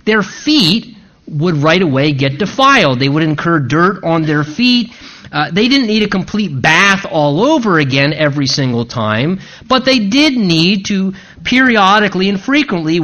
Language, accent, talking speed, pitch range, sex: English, American, 160 wpm, 145-210 Hz, male